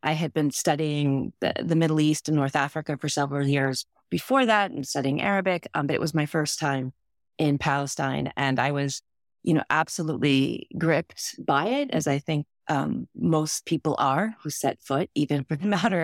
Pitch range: 140-165 Hz